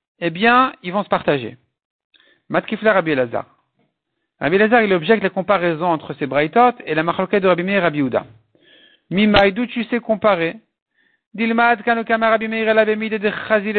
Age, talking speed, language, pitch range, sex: 50-69, 130 wpm, French, 180-235 Hz, male